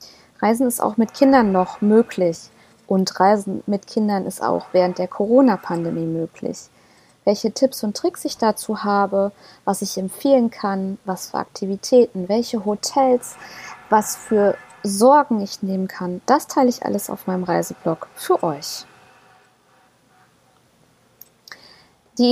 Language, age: German, 20-39